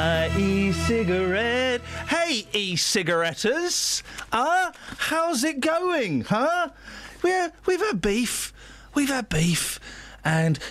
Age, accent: 30-49, British